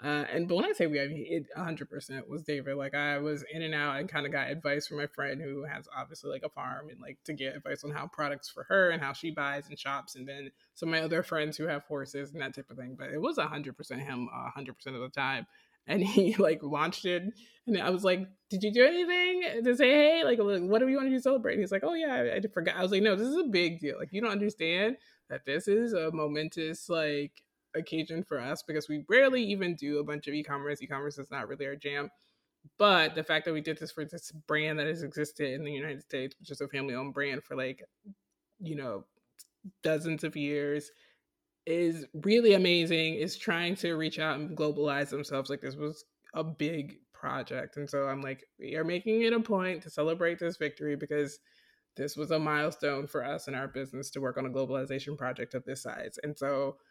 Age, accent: 20-39, American